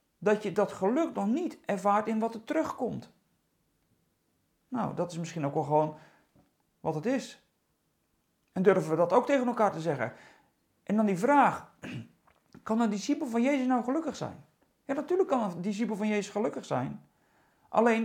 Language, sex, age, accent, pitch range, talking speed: Dutch, male, 40-59, Dutch, 205-275 Hz, 175 wpm